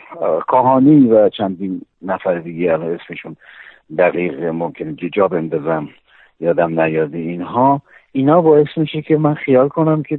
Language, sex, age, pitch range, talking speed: Persian, male, 50-69, 95-135 Hz, 135 wpm